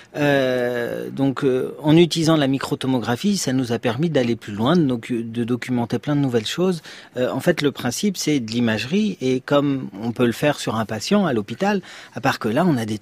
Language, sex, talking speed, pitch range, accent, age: French, male, 215 wpm, 120-160 Hz, French, 40-59